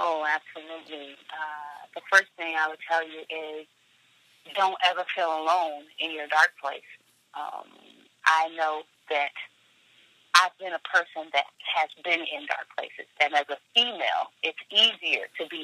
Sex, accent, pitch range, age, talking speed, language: female, American, 155-185 Hz, 30-49, 155 wpm, English